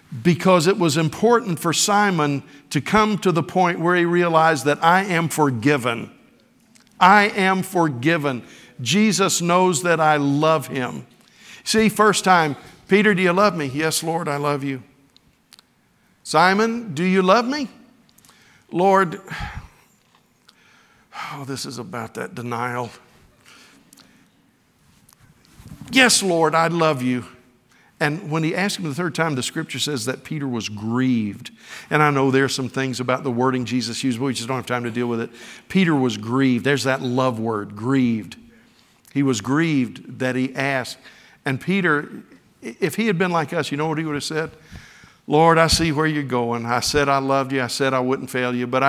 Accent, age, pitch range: American, 60-79, 130-175 Hz